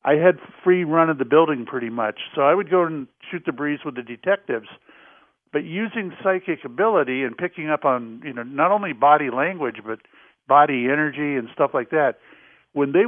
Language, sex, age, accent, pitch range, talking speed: English, male, 50-69, American, 135-165 Hz, 195 wpm